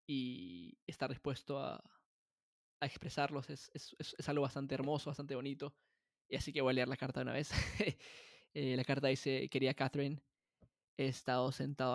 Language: Spanish